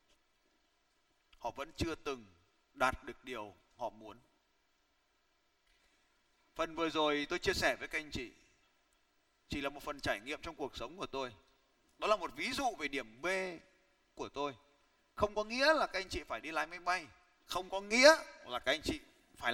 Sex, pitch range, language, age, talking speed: male, 205-330 Hz, Vietnamese, 20-39, 185 wpm